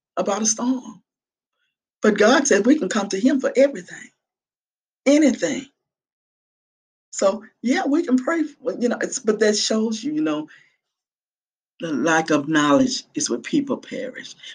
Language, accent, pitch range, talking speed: English, American, 170-265 Hz, 155 wpm